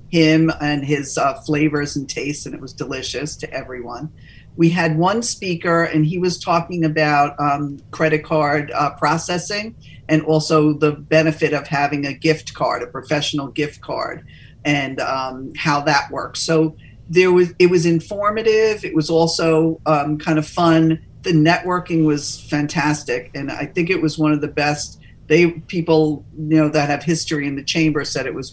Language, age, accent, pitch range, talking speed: English, 50-69, American, 145-165 Hz, 175 wpm